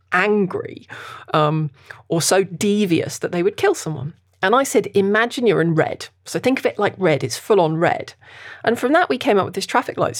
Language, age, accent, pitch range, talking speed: English, 40-59, British, 165-230 Hz, 210 wpm